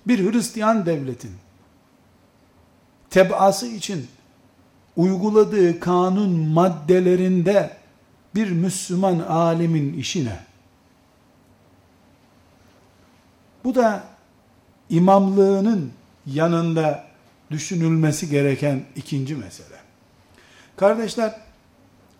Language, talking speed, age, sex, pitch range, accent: Turkish, 55 wpm, 60-79, male, 145-210 Hz, native